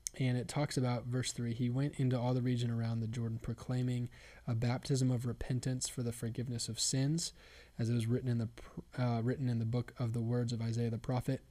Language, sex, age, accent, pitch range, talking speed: English, male, 20-39, American, 115-130 Hz, 225 wpm